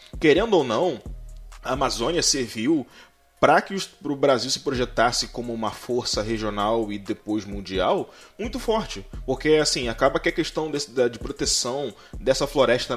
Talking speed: 155 wpm